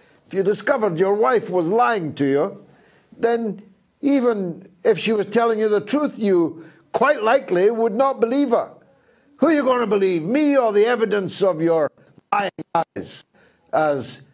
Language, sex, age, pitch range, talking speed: English, male, 60-79, 160-250 Hz, 165 wpm